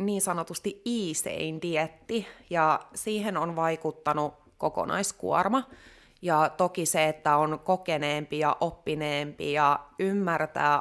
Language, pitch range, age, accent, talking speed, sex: Finnish, 145-165 Hz, 30-49, native, 100 wpm, female